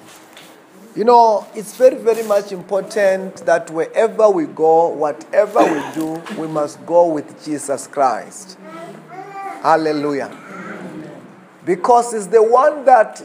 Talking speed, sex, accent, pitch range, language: 120 wpm, male, South African, 190-250 Hz, English